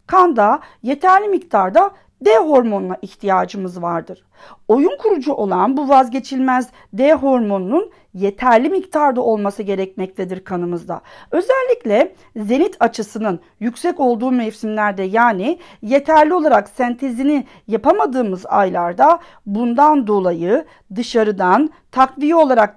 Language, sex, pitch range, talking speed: Turkish, female, 210-315 Hz, 95 wpm